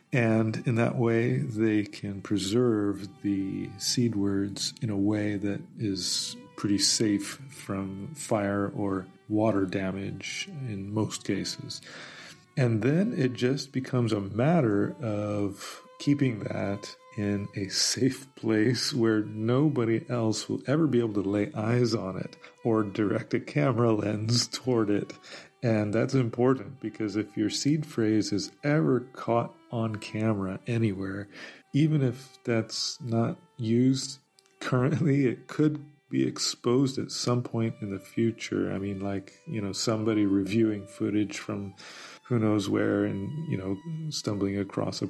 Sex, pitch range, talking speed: male, 100-125 Hz, 140 wpm